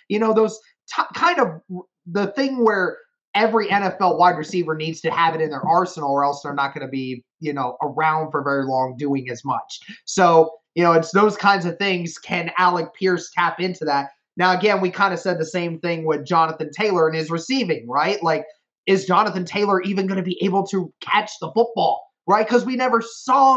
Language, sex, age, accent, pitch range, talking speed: English, male, 20-39, American, 160-200 Hz, 210 wpm